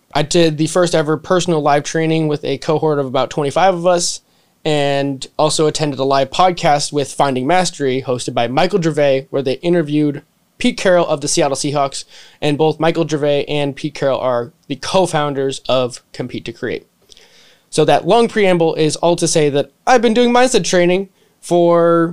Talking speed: 180 wpm